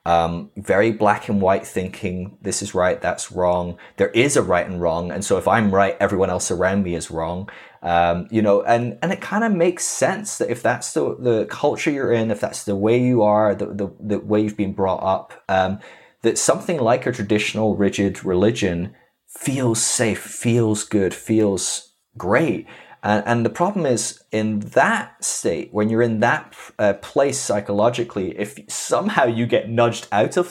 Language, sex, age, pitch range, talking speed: English, male, 20-39, 100-120 Hz, 185 wpm